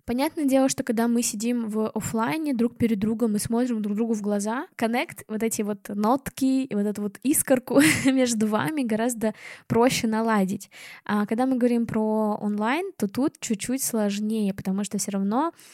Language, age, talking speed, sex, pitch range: Russian, 10-29, 175 wpm, female, 210-235 Hz